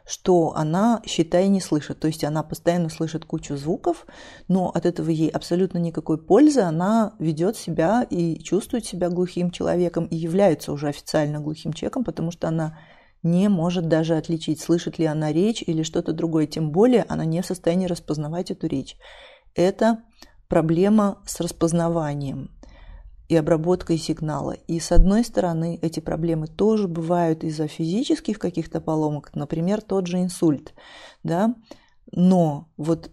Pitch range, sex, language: 160-190 Hz, female, Russian